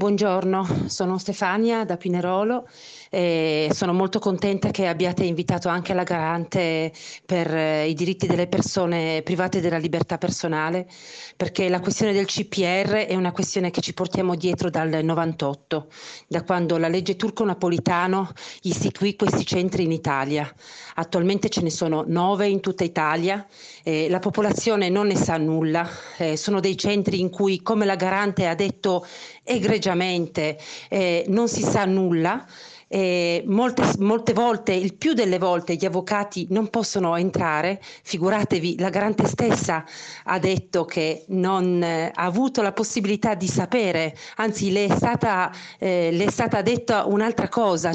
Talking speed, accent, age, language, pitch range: 150 wpm, native, 40-59, Italian, 170-205 Hz